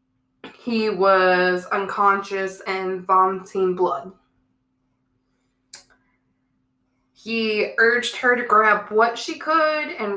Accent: American